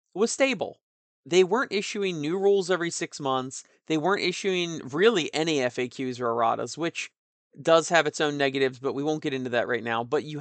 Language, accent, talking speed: English, American, 195 wpm